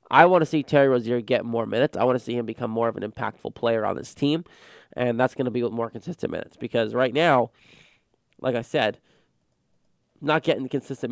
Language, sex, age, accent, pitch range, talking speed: English, male, 20-39, American, 120-150 Hz, 220 wpm